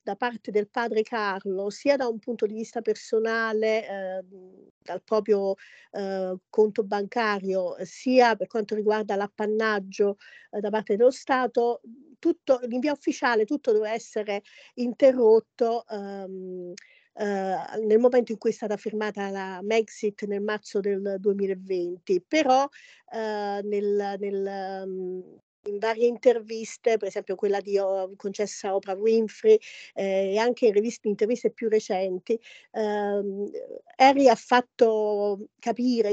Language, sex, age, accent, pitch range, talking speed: Italian, female, 40-59, native, 200-235 Hz, 130 wpm